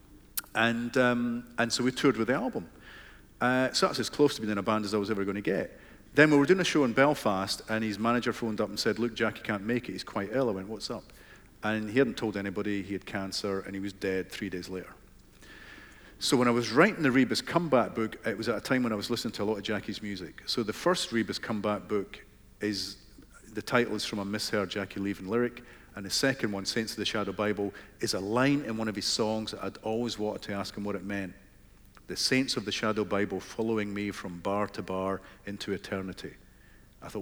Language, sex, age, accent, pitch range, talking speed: English, male, 40-59, British, 100-120 Hz, 245 wpm